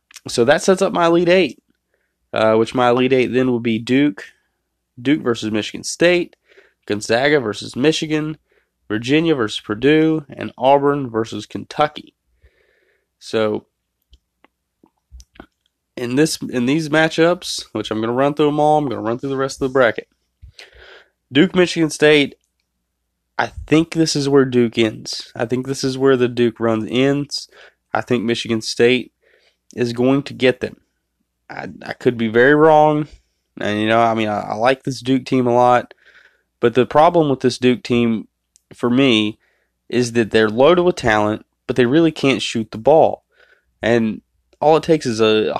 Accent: American